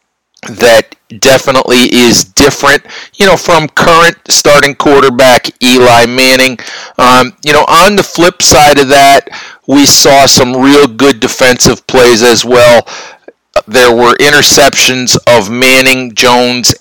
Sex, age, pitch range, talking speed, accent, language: male, 50-69, 120-140 Hz, 130 wpm, American, English